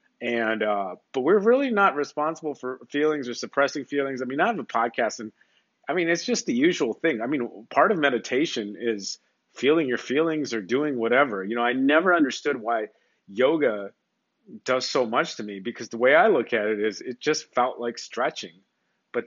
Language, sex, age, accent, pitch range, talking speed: English, male, 30-49, American, 120-170 Hz, 200 wpm